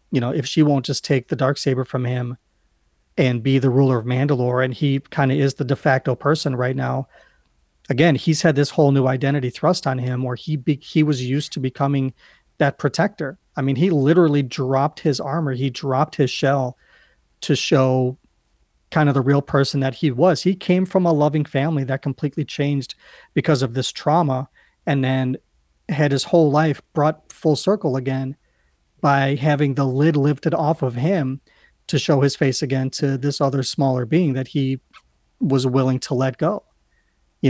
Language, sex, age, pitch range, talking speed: English, male, 40-59, 130-150 Hz, 190 wpm